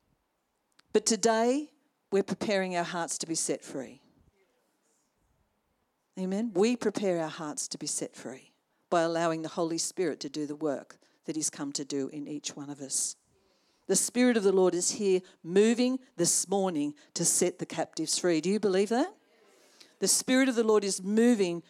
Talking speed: 175 wpm